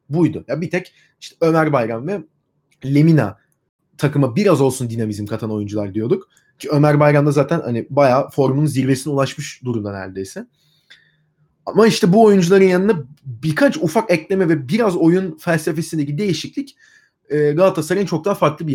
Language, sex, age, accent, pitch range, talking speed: Turkish, male, 30-49, native, 135-170 Hz, 145 wpm